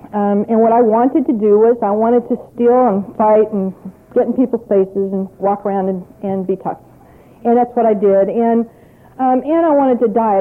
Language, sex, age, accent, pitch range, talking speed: English, female, 50-69, American, 215-260 Hz, 220 wpm